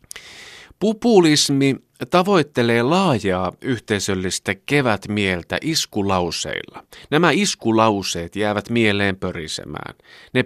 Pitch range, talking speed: 90-120 Hz, 70 wpm